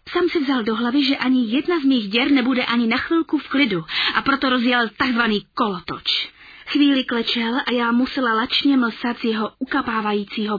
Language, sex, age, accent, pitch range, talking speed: Czech, female, 20-39, native, 200-250 Hz, 180 wpm